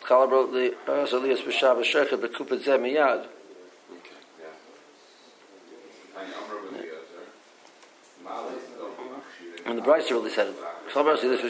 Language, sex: English, male